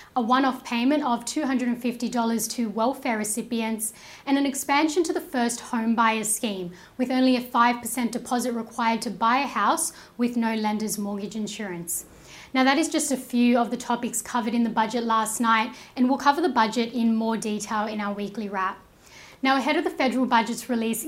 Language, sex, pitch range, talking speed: English, female, 220-255 Hz, 190 wpm